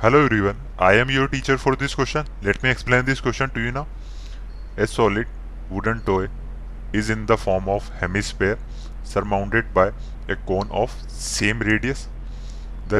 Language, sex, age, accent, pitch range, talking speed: Hindi, male, 20-39, native, 100-120 Hz, 160 wpm